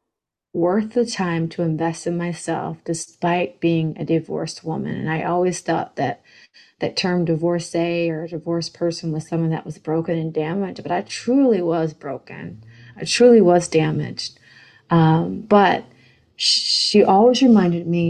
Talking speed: 155 wpm